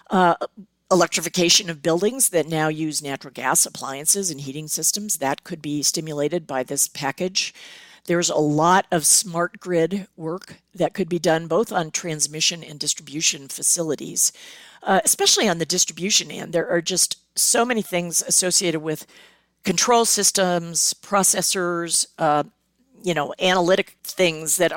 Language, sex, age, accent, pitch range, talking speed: English, female, 50-69, American, 160-200 Hz, 145 wpm